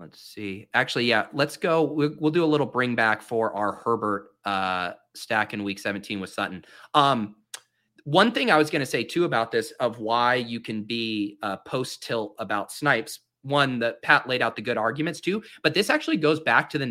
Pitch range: 115-160 Hz